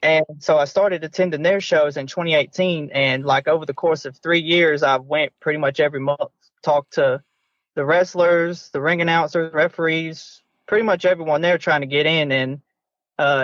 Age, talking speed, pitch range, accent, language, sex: 20-39, 185 wpm, 135-165 Hz, American, English, male